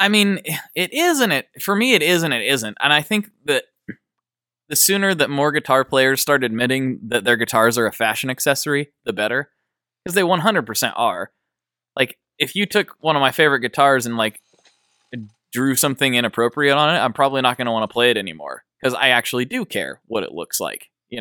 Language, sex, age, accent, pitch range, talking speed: English, male, 20-39, American, 120-160 Hz, 210 wpm